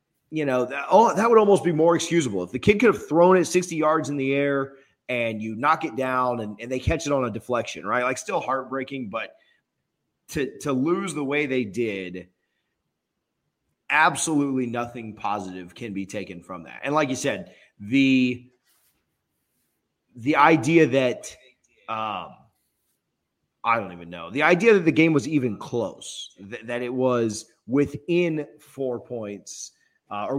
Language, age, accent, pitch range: English, 30-49, American, 115-145 Hz